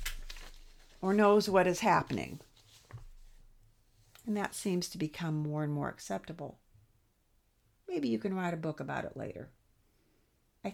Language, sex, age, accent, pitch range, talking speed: English, female, 60-79, American, 110-165 Hz, 135 wpm